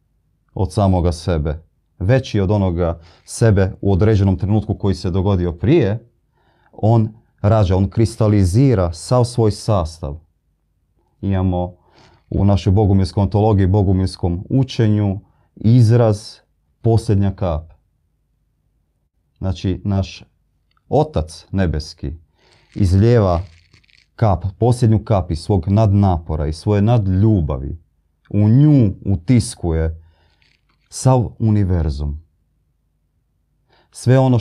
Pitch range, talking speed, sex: 85-110 Hz, 90 wpm, male